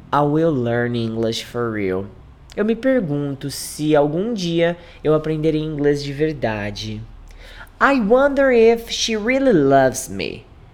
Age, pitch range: 20-39, 120-185 Hz